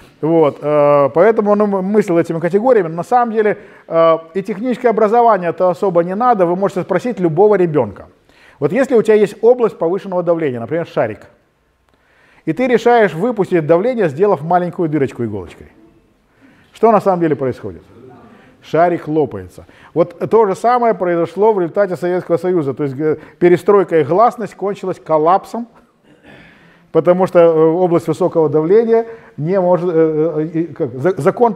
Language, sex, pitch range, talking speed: Ukrainian, male, 150-200 Hz, 135 wpm